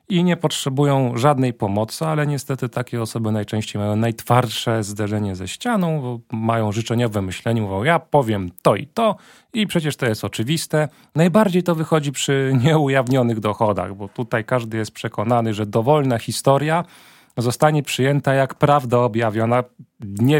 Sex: male